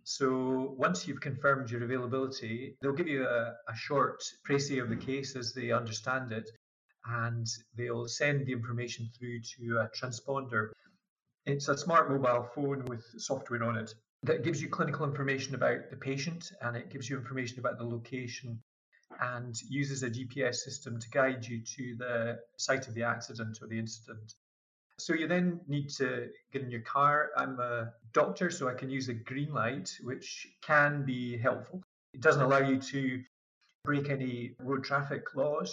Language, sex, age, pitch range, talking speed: English, male, 30-49, 120-135 Hz, 175 wpm